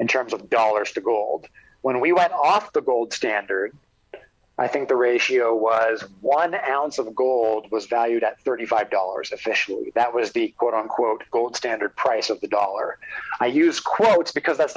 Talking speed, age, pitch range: 180 wpm, 30-49, 125-205 Hz